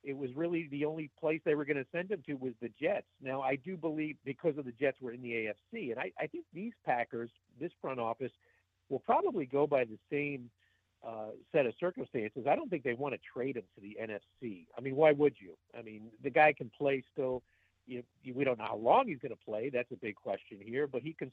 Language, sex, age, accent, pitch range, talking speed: English, male, 50-69, American, 120-145 Hz, 245 wpm